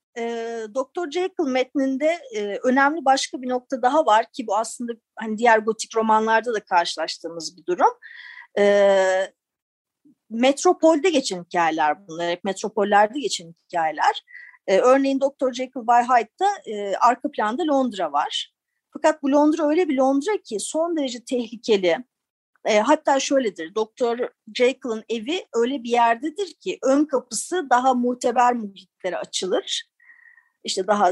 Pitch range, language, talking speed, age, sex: 205-280 Hz, Turkish, 125 wpm, 50-69, female